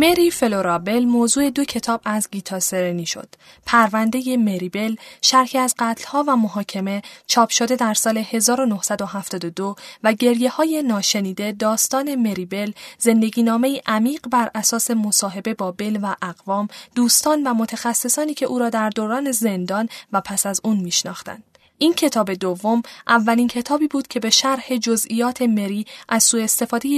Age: 10-29